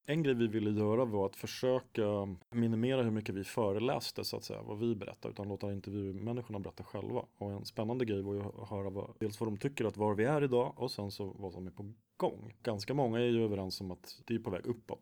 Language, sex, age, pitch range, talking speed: Swedish, male, 30-49, 95-120 Hz, 250 wpm